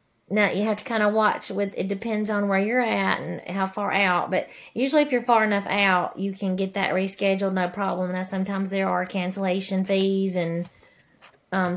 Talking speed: 205 wpm